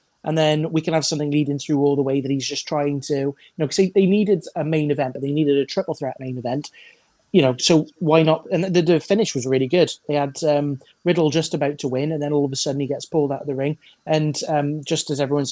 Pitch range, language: 140-160 Hz, English